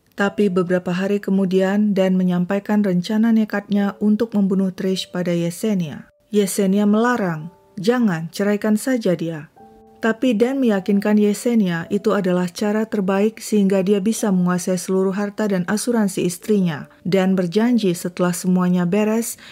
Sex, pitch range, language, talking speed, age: female, 180-210 Hz, Indonesian, 125 wpm, 30-49